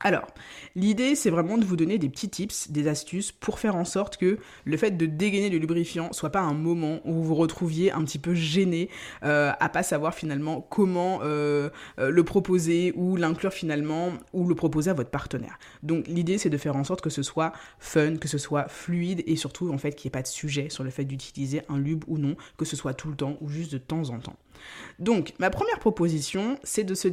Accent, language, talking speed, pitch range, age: French, French, 230 wpm, 150-200 Hz, 20-39